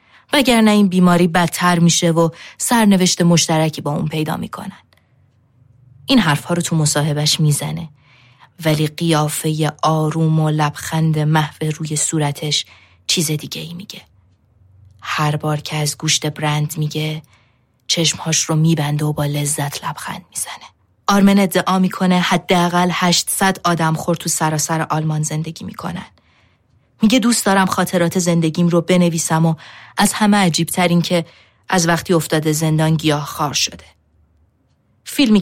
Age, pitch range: 20-39, 150-175 Hz